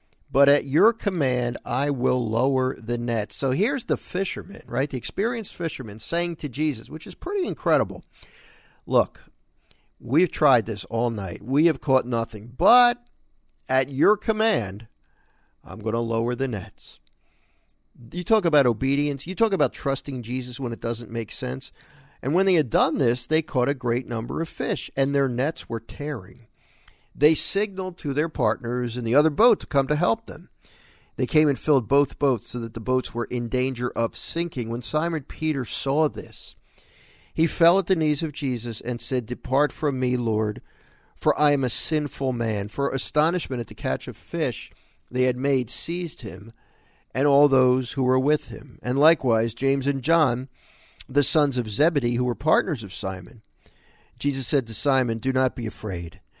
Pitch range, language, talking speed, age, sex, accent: 115-150 Hz, English, 180 wpm, 50-69, male, American